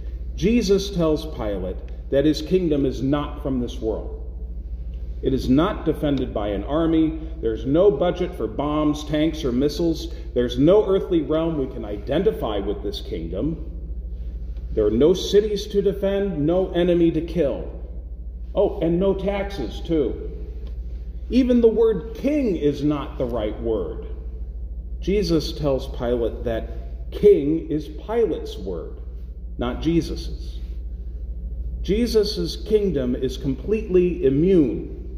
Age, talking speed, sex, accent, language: 40-59, 130 wpm, male, American, English